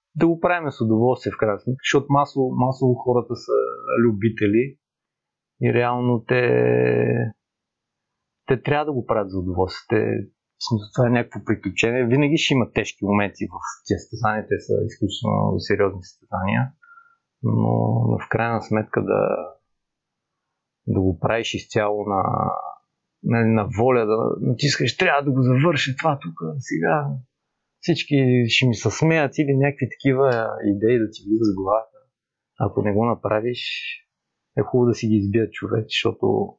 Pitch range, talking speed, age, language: 105-135 Hz, 150 wpm, 30-49, Bulgarian